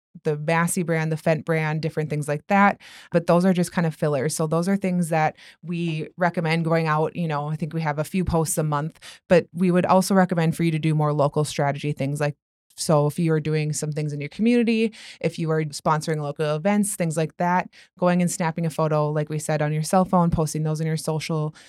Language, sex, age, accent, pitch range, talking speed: English, female, 20-39, American, 155-175 Hz, 240 wpm